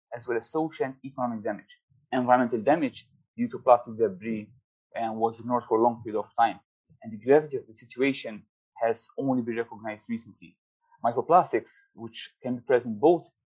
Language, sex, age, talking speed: English, male, 30-49, 175 wpm